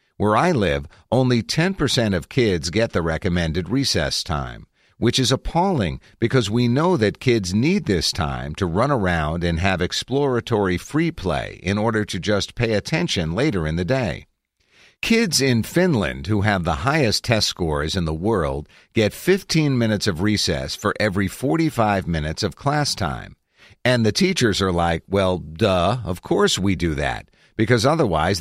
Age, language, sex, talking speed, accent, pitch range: 50-69, English, male, 165 wpm, American, 90-130 Hz